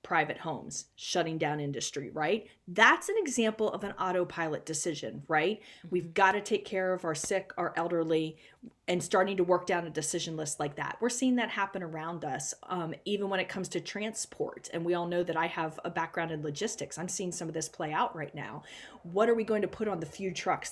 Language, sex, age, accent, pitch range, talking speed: English, female, 30-49, American, 160-200 Hz, 225 wpm